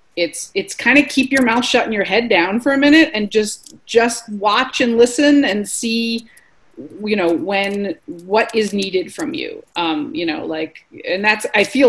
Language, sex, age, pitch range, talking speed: English, female, 30-49, 185-265 Hz, 195 wpm